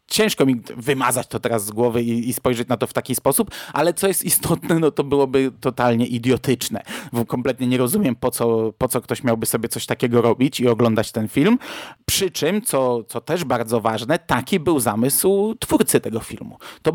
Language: Polish